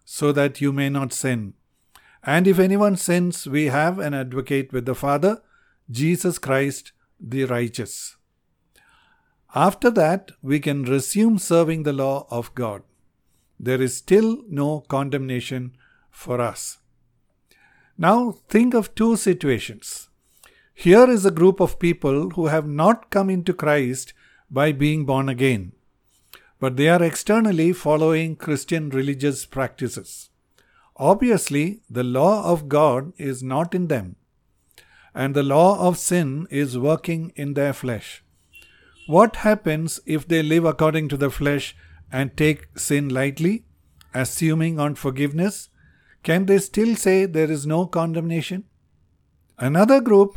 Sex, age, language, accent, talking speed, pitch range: male, 50-69, English, Indian, 135 wpm, 135-180 Hz